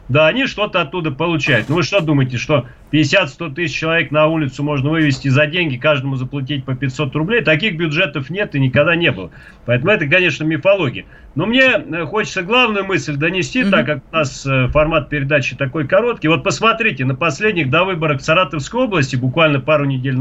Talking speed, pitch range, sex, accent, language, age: 180 wpm, 135-175 Hz, male, native, Russian, 40-59